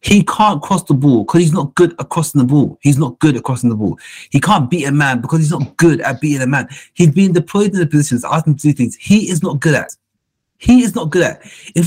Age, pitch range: 30-49, 130-175 Hz